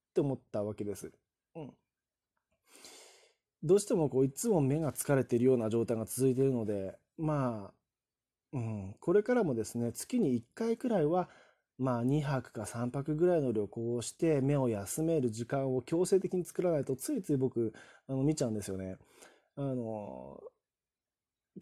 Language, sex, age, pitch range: Japanese, male, 20-39, 115-155 Hz